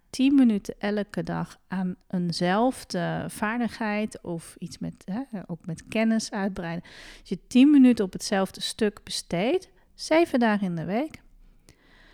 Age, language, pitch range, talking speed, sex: 40-59, Dutch, 175-220 Hz, 140 wpm, female